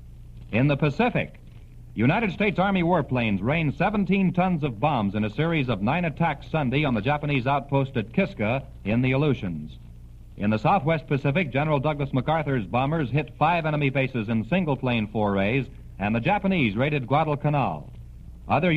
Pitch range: 115-155 Hz